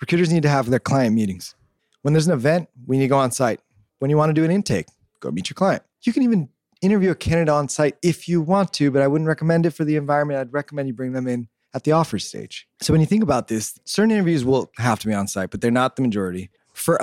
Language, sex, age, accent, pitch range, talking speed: English, male, 20-39, American, 115-150 Hz, 275 wpm